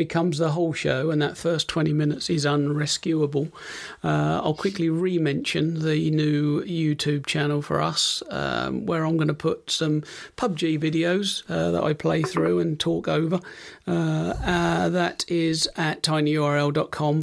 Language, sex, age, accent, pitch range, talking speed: English, male, 40-59, British, 150-175 Hz, 155 wpm